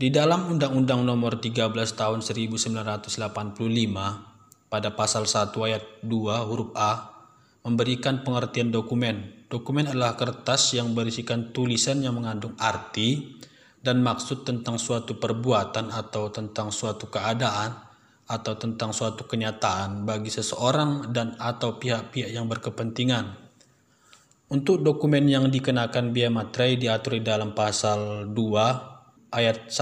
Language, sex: Indonesian, male